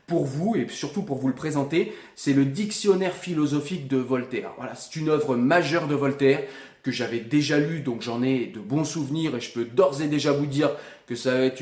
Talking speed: 215 wpm